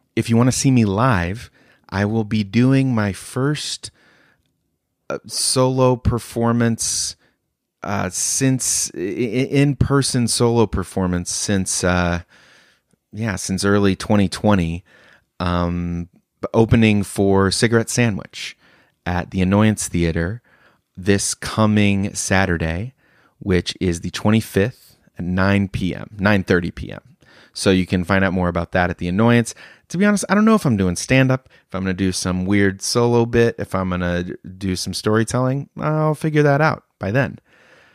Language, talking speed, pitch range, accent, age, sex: English, 145 wpm, 95-125 Hz, American, 30-49, male